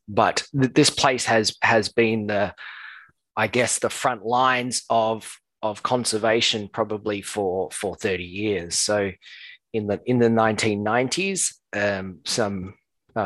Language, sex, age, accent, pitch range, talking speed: English, male, 20-39, Australian, 105-135 Hz, 130 wpm